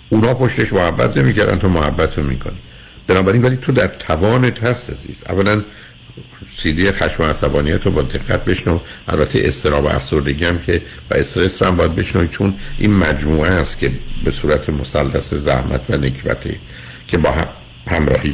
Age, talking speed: 60-79, 165 wpm